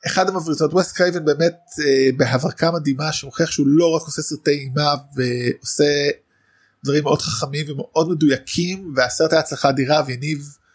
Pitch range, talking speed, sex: 130-160 Hz, 140 wpm, male